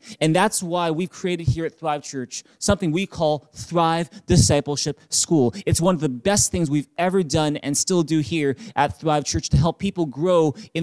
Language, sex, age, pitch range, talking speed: English, male, 20-39, 155-195 Hz, 200 wpm